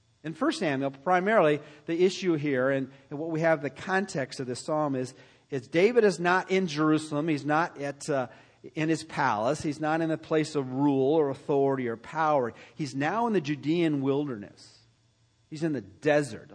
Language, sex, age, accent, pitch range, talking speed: English, male, 40-59, American, 125-165 Hz, 190 wpm